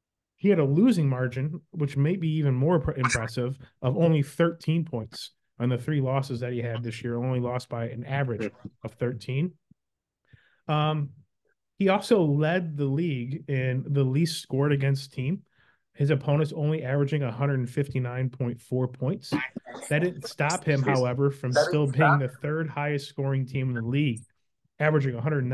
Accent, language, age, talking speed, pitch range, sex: American, English, 30-49, 155 wpm, 125-150 Hz, male